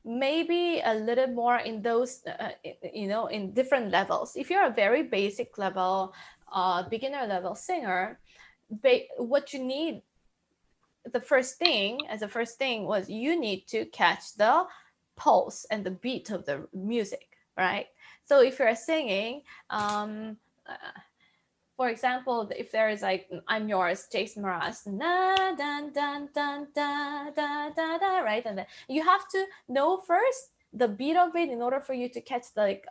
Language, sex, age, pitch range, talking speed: English, female, 20-39, 215-295 Hz, 155 wpm